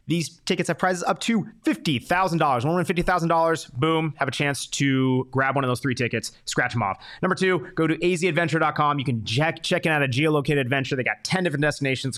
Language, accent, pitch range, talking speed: English, American, 130-165 Hz, 200 wpm